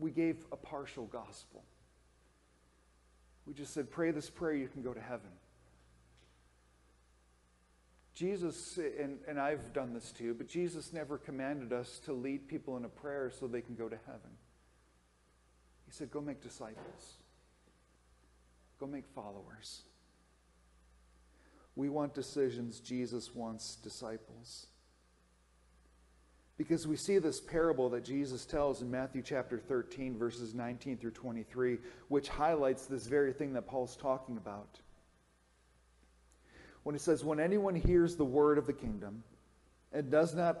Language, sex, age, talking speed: English, male, 40-59, 135 wpm